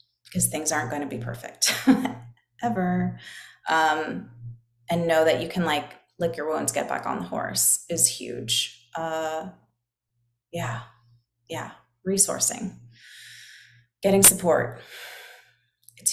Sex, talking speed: female, 120 wpm